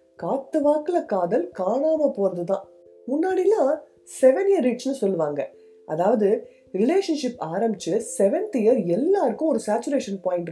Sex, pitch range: female, 180-295 Hz